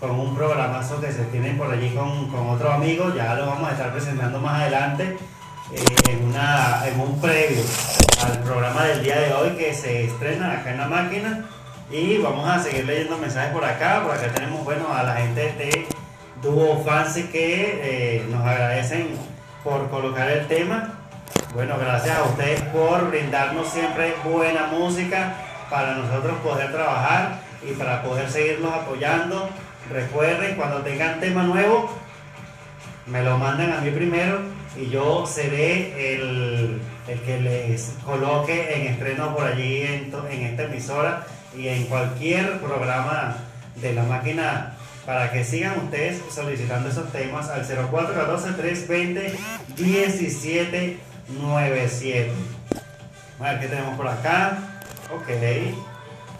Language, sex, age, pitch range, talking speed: Spanish, male, 30-49, 125-160 Hz, 145 wpm